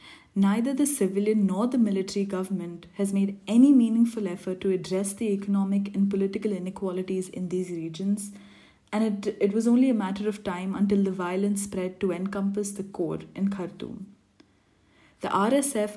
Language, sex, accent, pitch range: English, female, Indian, 185-210 Hz